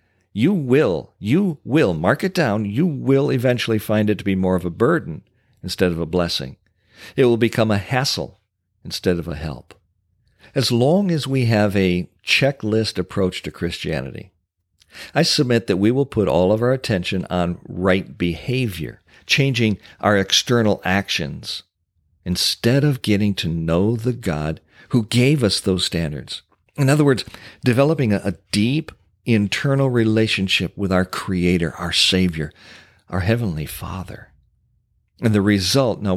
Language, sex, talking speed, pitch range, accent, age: English, male, 150 wpm, 90-125 Hz, American, 50-69